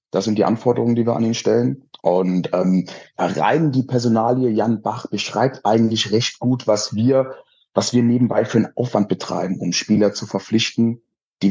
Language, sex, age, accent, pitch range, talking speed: German, male, 30-49, German, 105-130 Hz, 175 wpm